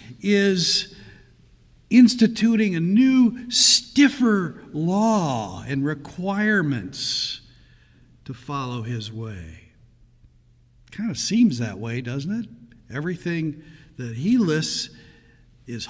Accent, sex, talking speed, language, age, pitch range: American, male, 90 wpm, English, 60-79, 120-165 Hz